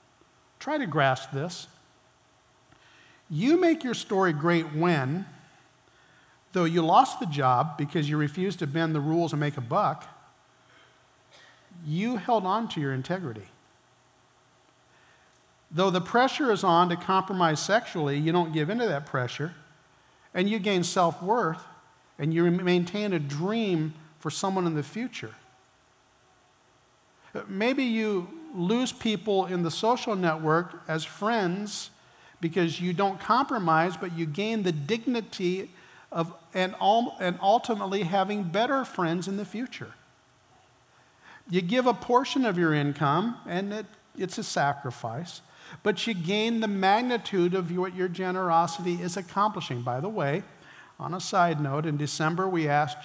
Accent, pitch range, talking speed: American, 160-205 Hz, 140 wpm